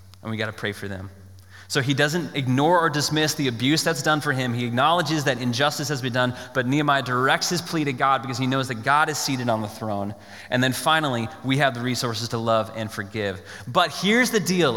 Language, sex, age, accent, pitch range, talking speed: English, male, 20-39, American, 115-175 Hz, 235 wpm